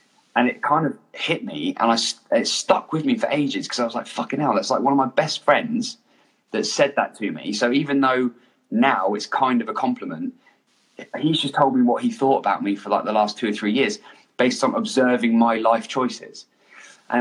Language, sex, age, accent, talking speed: English, male, 20-39, British, 225 wpm